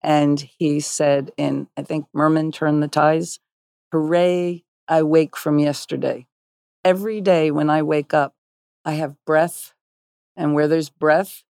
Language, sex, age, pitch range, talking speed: English, female, 50-69, 140-165 Hz, 145 wpm